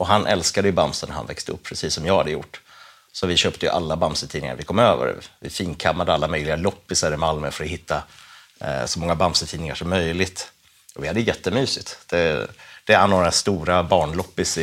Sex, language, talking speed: male, Swedish, 195 wpm